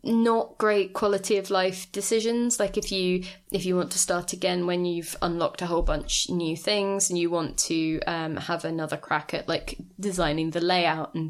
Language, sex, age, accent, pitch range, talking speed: English, female, 20-39, British, 160-185 Hz, 200 wpm